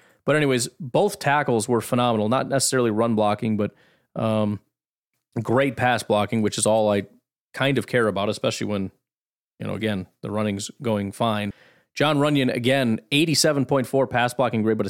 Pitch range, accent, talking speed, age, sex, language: 110-140 Hz, American, 160 wpm, 30-49, male, English